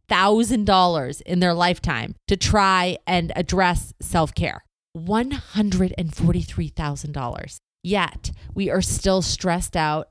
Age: 30-49